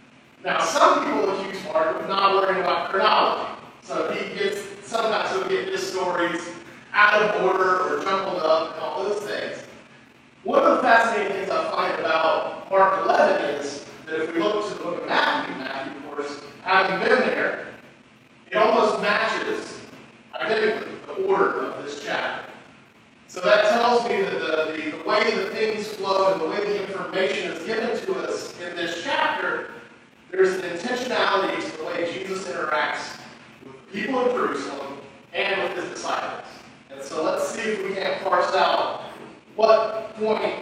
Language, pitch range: English, 180-215 Hz